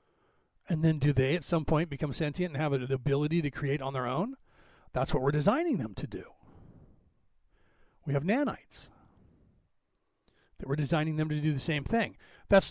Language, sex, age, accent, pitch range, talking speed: English, male, 40-59, American, 145-195 Hz, 180 wpm